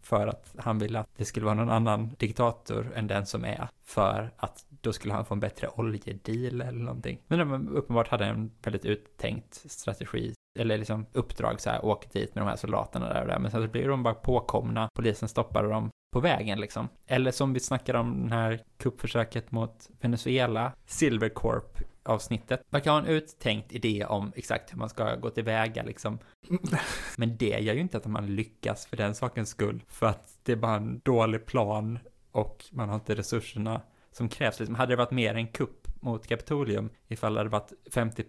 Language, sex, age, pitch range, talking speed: Swedish, male, 20-39, 110-125 Hz, 200 wpm